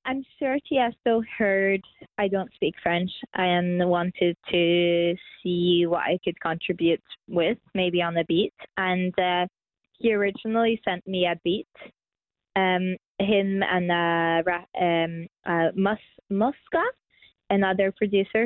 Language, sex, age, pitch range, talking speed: Danish, female, 20-39, 175-220 Hz, 125 wpm